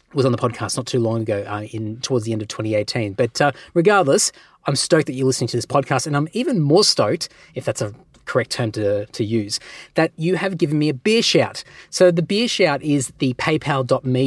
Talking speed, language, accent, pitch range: 225 wpm, English, Australian, 120-150 Hz